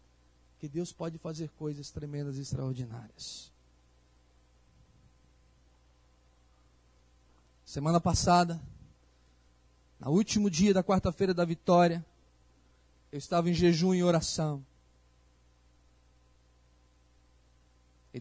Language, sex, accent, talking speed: Portuguese, male, Brazilian, 80 wpm